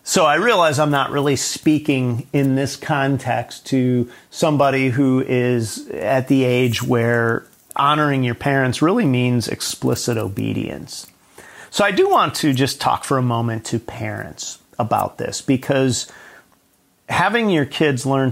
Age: 40-59